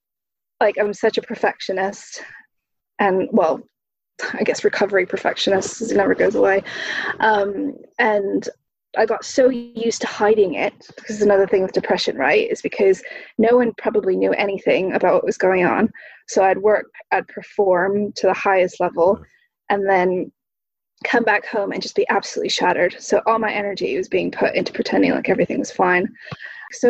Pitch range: 200-285 Hz